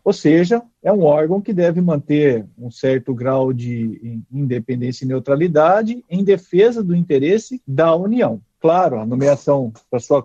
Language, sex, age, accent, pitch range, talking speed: Portuguese, male, 50-69, Brazilian, 140-200 Hz, 150 wpm